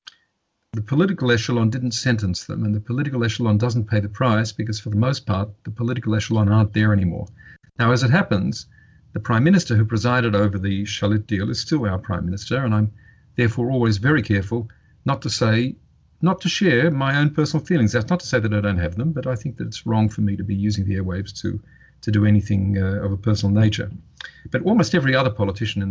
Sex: male